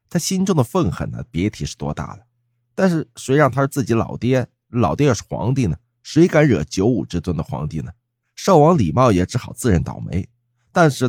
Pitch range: 85-130 Hz